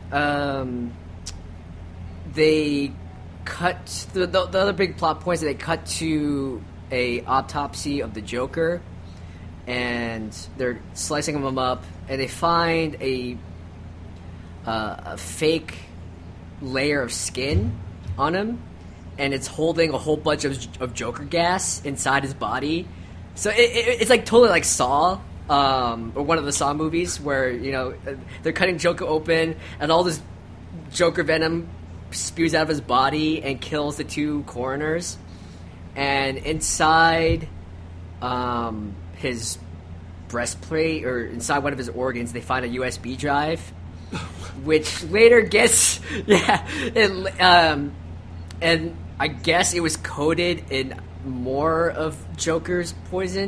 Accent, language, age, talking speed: American, English, 20-39, 130 wpm